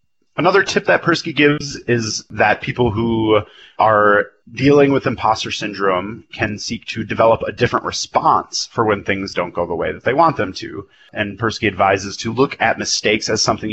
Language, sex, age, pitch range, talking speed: English, male, 30-49, 100-130 Hz, 185 wpm